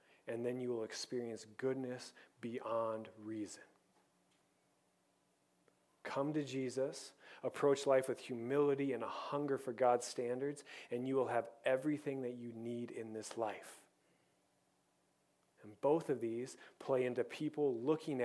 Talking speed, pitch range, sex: 130 wpm, 115-135 Hz, male